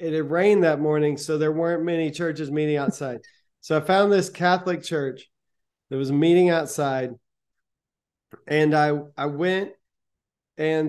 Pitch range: 150-170 Hz